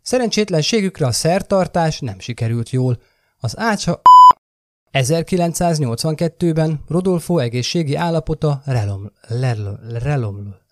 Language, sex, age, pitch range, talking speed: Hungarian, male, 30-49, 120-195 Hz, 75 wpm